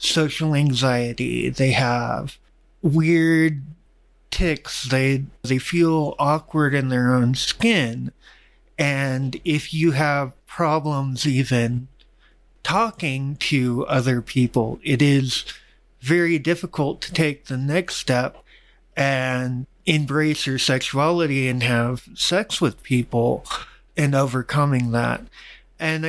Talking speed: 105 wpm